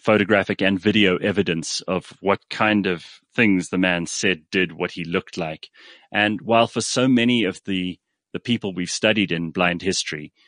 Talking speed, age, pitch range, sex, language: 180 wpm, 30-49, 95-115 Hz, male, English